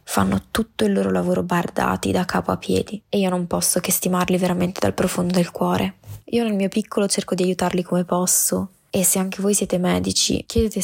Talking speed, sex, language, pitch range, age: 205 wpm, female, Italian, 170-200 Hz, 20-39